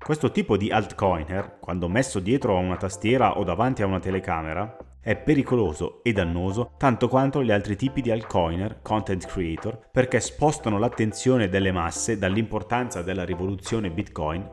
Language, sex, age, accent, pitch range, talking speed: Italian, male, 30-49, native, 85-110 Hz, 155 wpm